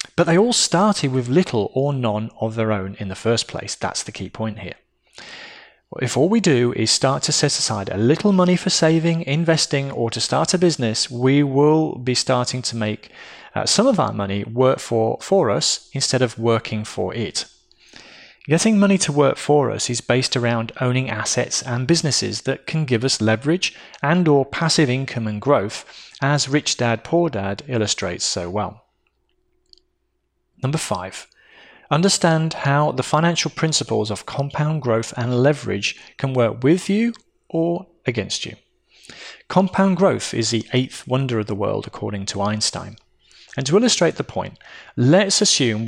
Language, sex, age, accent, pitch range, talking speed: English, male, 30-49, British, 115-165 Hz, 170 wpm